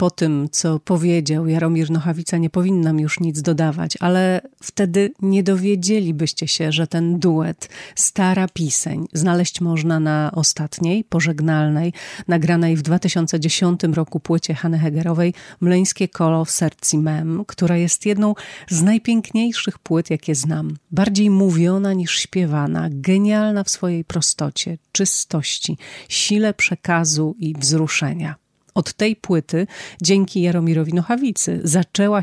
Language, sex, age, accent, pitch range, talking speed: Polish, female, 40-59, native, 160-185 Hz, 125 wpm